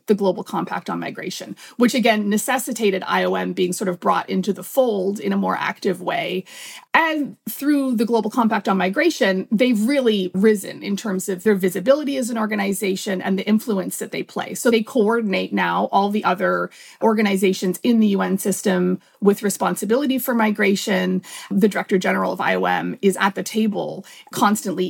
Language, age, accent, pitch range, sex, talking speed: English, 30-49, American, 190-245 Hz, female, 170 wpm